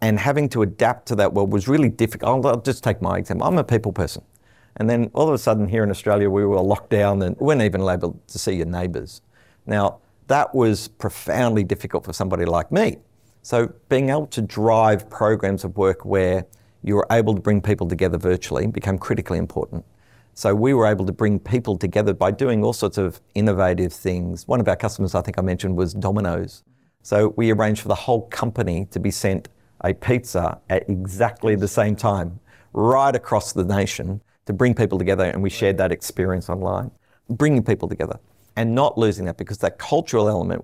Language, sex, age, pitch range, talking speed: English, male, 50-69, 95-115 Hz, 200 wpm